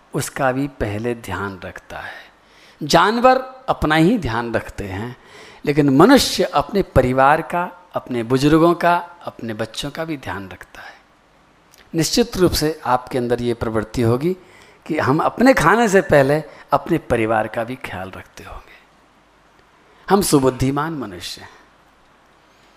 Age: 50-69